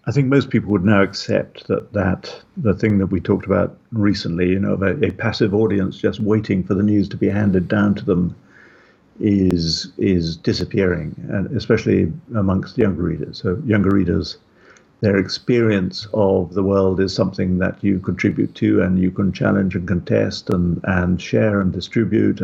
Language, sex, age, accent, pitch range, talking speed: English, male, 50-69, British, 95-110 Hz, 180 wpm